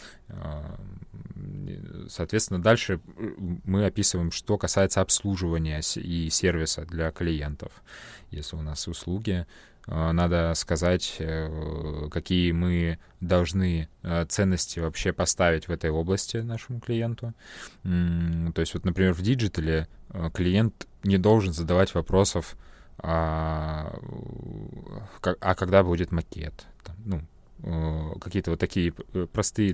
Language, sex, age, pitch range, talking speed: Russian, male, 20-39, 80-95 Hz, 95 wpm